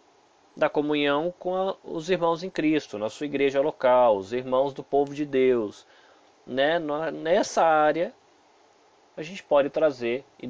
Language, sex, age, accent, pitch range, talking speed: Portuguese, male, 20-39, Brazilian, 125-175 Hz, 150 wpm